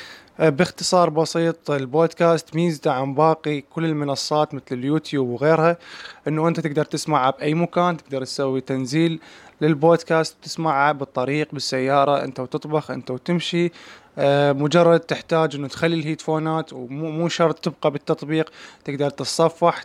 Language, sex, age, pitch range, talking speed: Arabic, male, 20-39, 140-165 Hz, 120 wpm